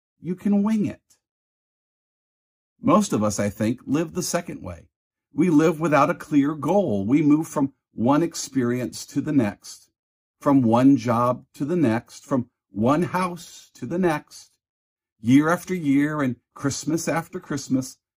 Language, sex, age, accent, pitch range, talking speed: English, male, 50-69, American, 115-170 Hz, 150 wpm